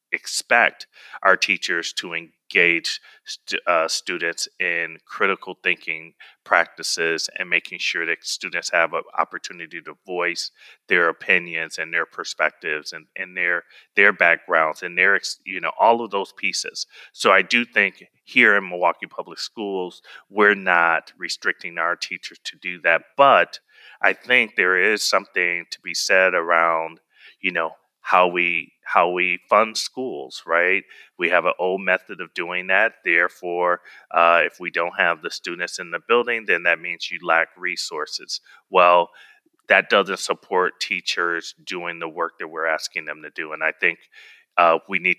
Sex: male